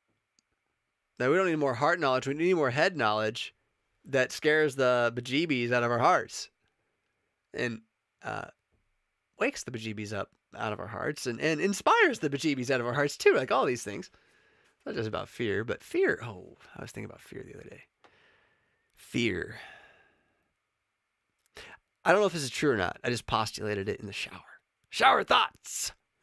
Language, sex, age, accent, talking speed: Italian, male, 20-39, American, 180 wpm